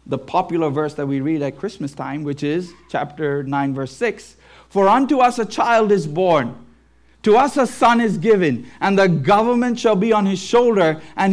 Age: 50-69